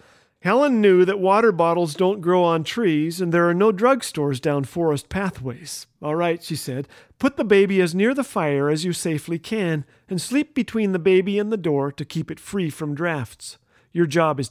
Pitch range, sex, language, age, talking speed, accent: 155-215 Hz, male, English, 40-59, 205 wpm, American